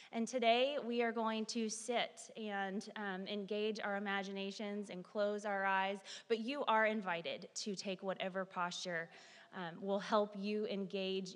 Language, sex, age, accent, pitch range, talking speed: English, female, 20-39, American, 195-250 Hz, 155 wpm